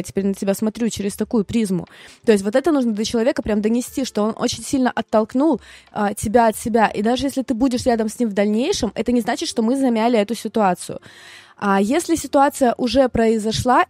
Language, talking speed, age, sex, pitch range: Russian, 205 wpm, 20-39, female, 195-235 Hz